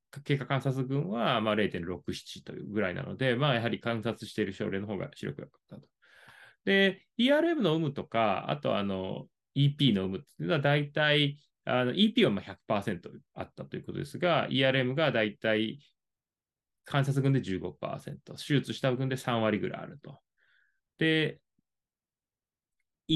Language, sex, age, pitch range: Japanese, male, 20-39, 110-160 Hz